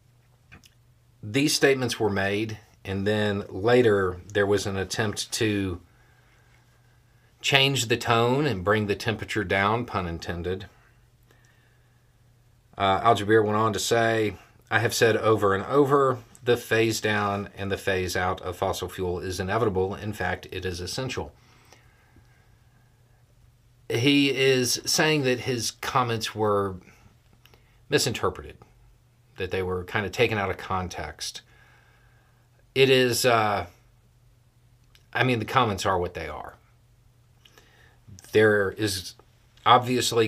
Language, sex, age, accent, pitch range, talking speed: English, male, 40-59, American, 100-120 Hz, 125 wpm